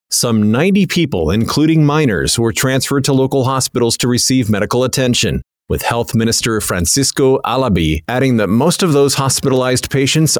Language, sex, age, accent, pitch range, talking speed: English, male, 40-59, American, 110-140 Hz, 150 wpm